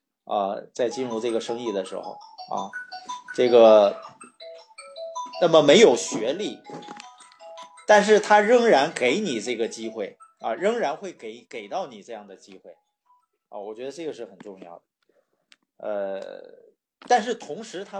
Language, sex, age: Chinese, male, 20-39